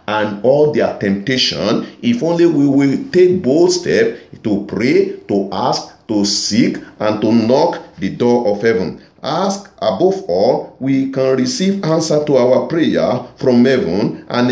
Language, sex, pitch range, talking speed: English, male, 115-165 Hz, 155 wpm